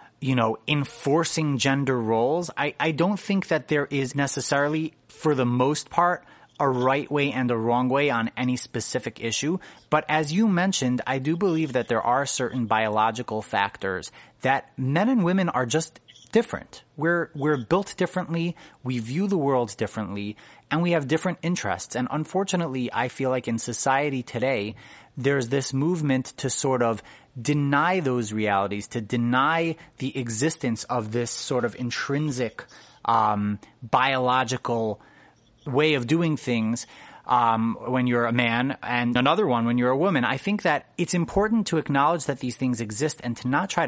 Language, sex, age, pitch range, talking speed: English, male, 30-49, 115-150 Hz, 165 wpm